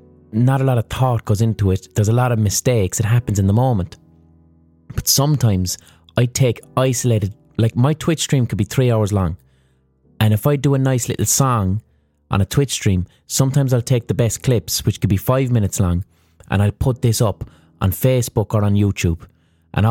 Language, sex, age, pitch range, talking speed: English, male, 30-49, 95-130 Hz, 200 wpm